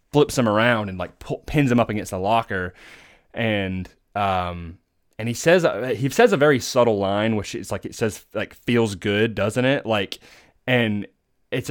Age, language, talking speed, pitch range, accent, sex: 20-39, English, 185 wpm, 90-110 Hz, American, male